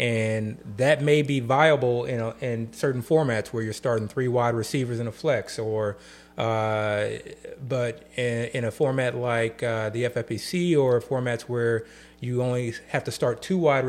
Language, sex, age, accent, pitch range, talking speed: English, male, 30-49, American, 110-140 Hz, 175 wpm